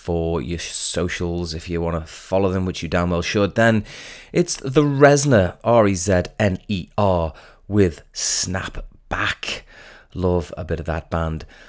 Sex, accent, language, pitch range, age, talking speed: male, British, English, 85-110 Hz, 30-49, 145 wpm